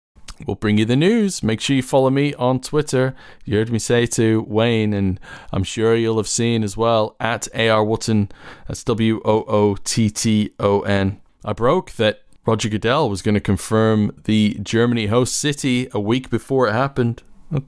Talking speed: 195 wpm